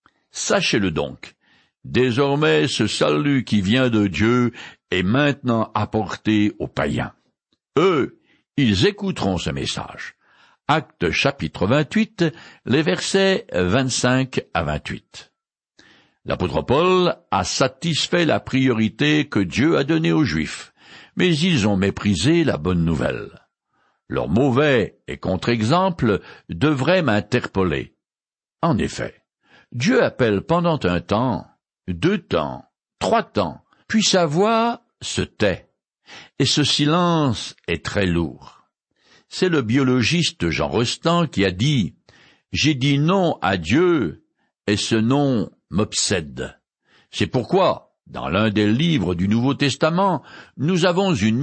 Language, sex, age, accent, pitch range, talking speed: French, male, 60-79, French, 105-160 Hz, 120 wpm